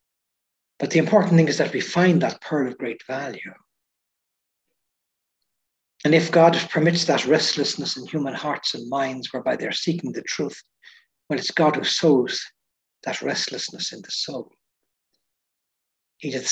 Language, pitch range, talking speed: English, 140-170 Hz, 145 wpm